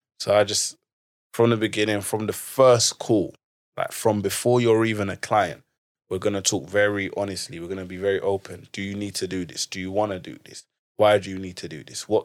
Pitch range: 95-110 Hz